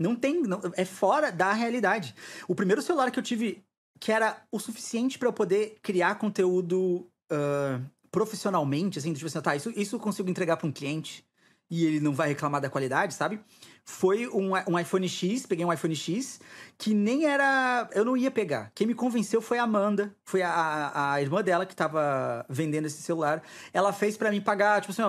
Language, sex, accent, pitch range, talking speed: Portuguese, male, Brazilian, 170-245 Hz, 200 wpm